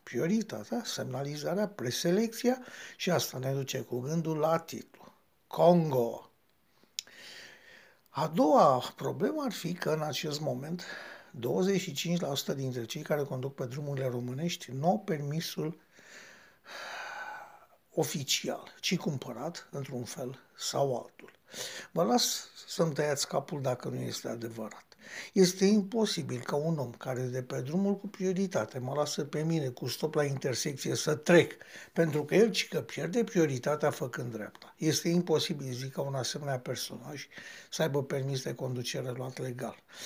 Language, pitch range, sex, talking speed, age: Romanian, 135-175 Hz, male, 140 wpm, 60-79